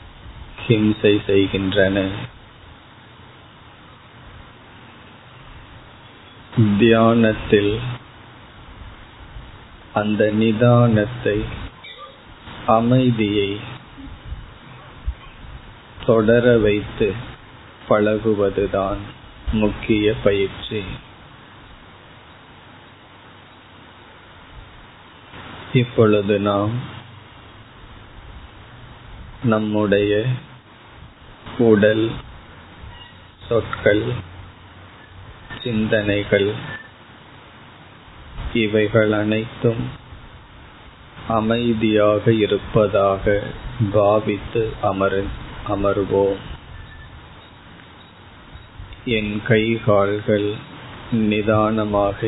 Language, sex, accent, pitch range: Tamil, male, native, 100-115 Hz